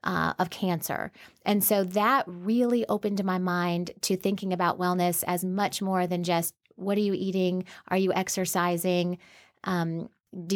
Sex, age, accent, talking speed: female, 30-49, American, 160 wpm